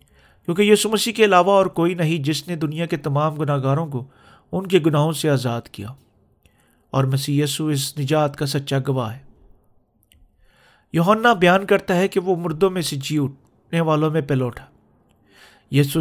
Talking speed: 170 wpm